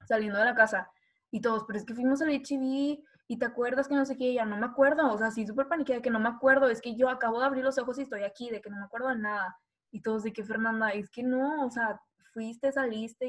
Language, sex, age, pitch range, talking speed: Spanish, female, 10-29, 220-270 Hz, 290 wpm